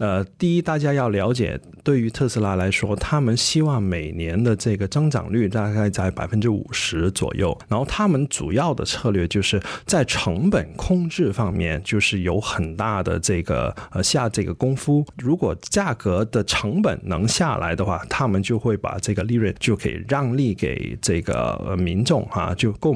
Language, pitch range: Chinese, 100-130 Hz